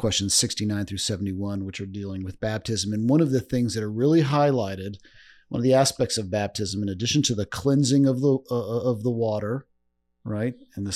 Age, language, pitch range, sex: 40-59, English, 100-135 Hz, male